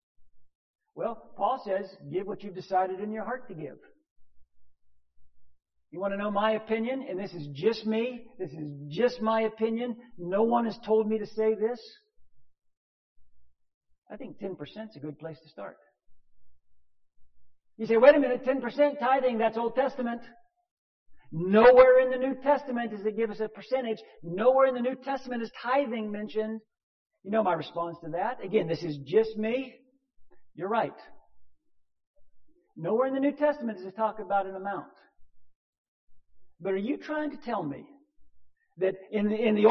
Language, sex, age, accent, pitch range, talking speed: English, male, 50-69, American, 185-255 Hz, 165 wpm